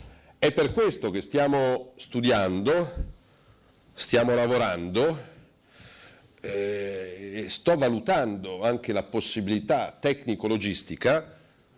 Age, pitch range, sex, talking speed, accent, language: 50-69, 95-120 Hz, male, 75 wpm, native, Italian